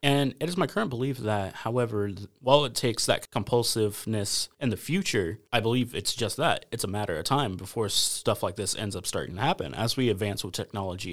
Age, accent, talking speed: 30-49, American, 215 wpm